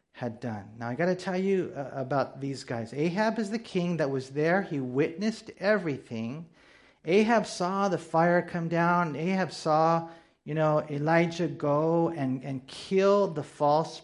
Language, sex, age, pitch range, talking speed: English, male, 40-59, 145-200 Hz, 155 wpm